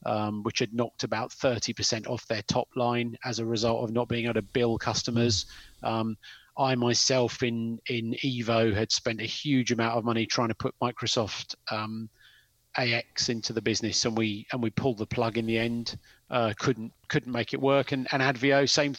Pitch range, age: 115-130 Hz, 30-49